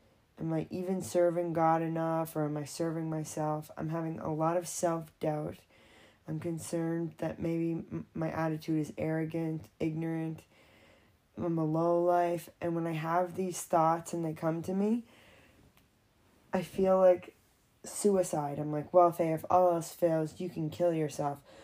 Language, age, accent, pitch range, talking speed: English, 20-39, American, 155-175 Hz, 155 wpm